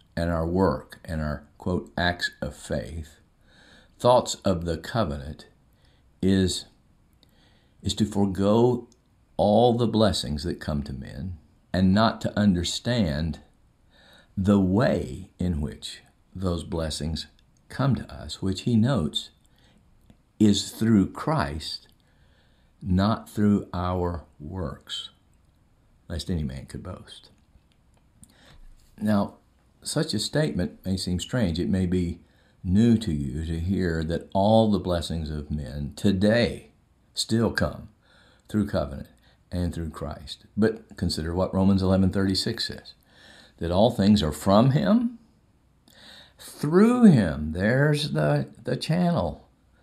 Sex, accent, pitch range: male, American, 80-105 Hz